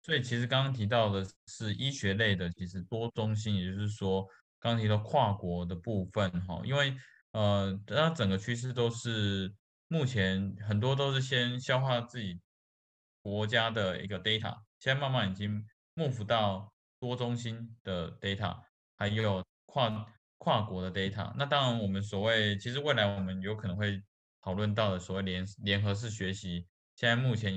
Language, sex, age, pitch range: Chinese, male, 20-39, 95-120 Hz